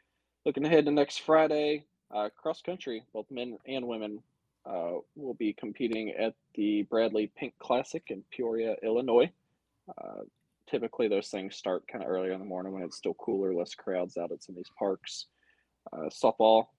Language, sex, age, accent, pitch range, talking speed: English, male, 20-39, American, 105-135 Hz, 170 wpm